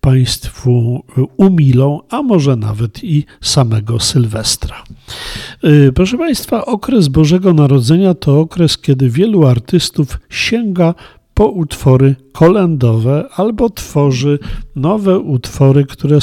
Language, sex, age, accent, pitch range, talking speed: Polish, male, 50-69, native, 130-170 Hz, 100 wpm